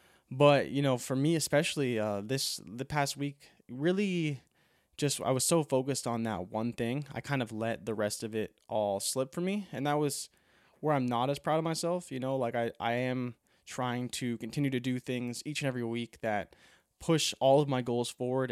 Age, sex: 20-39, male